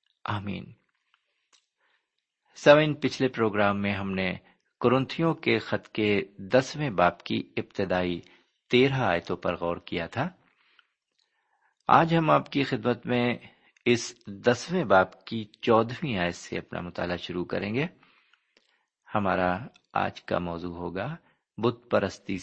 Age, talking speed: 50-69, 125 wpm